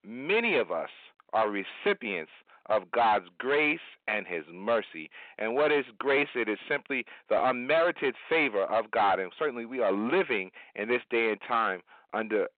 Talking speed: 160 wpm